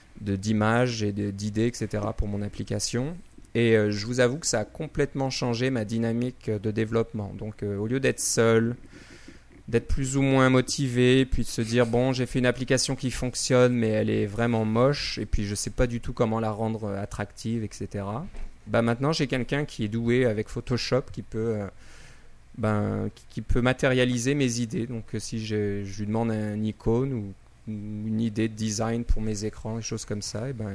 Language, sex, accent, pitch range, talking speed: French, male, French, 110-125 Hz, 205 wpm